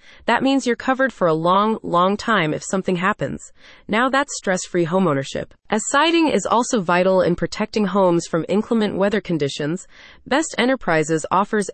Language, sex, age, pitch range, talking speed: English, female, 20-39, 170-235 Hz, 160 wpm